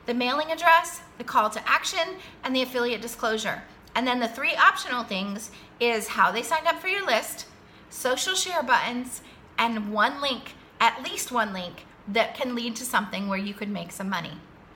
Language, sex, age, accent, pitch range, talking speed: English, female, 30-49, American, 220-285 Hz, 185 wpm